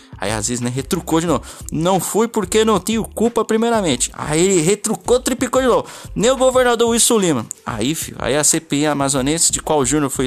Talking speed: 205 wpm